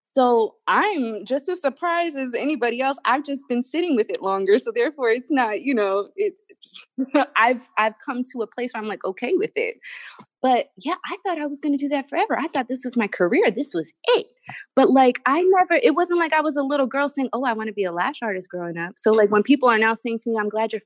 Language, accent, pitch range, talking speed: English, American, 200-270 Hz, 255 wpm